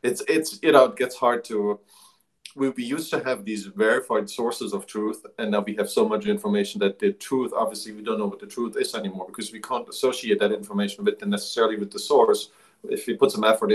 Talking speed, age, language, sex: 230 wpm, 40-59, English, male